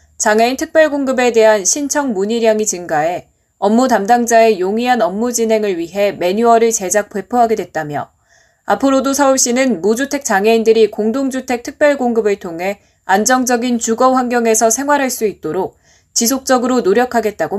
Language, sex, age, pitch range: Korean, female, 20-39, 195-260 Hz